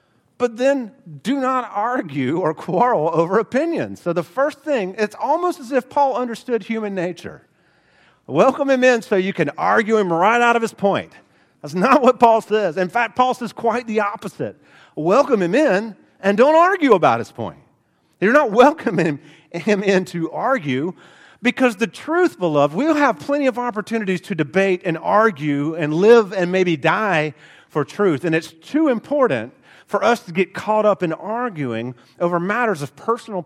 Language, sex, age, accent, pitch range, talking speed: English, male, 40-59, American, 165-250 Hz, 175 wpm